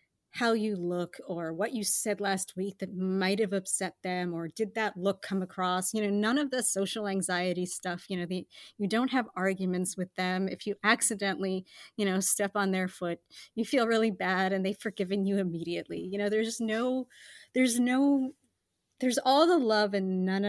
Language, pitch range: English, 180-230 Hz